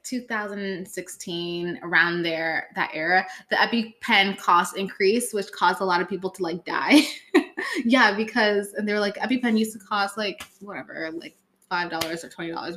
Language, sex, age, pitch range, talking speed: English, female, 20-39, 180-245 Hz, 160 wpm